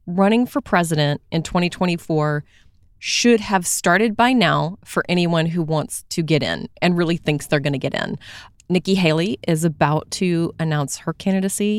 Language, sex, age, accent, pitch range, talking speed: English, female, 30-49, American, 160-195 Hz, 170 wpm